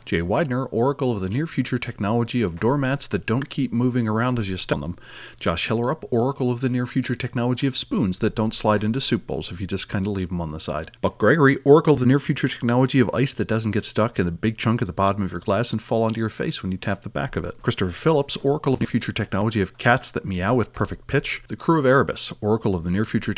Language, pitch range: English, 95-130 Hz